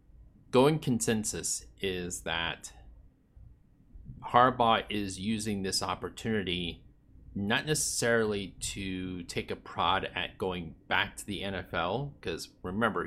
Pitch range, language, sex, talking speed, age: 90-110 Hz, English, male, 105 wpm, 30-49